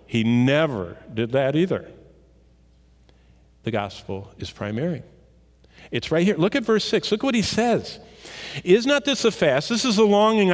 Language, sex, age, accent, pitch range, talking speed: English, male, 50-69, American, 120-195 Hz, 165 wpm